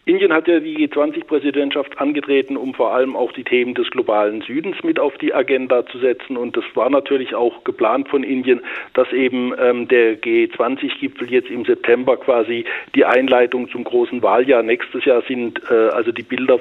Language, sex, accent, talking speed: German, male, German, 180 wpm